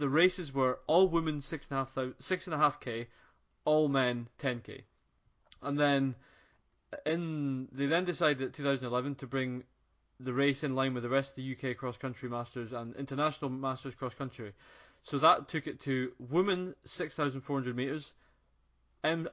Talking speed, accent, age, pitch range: 180 wpm, British, 20-39, 125-150 Hz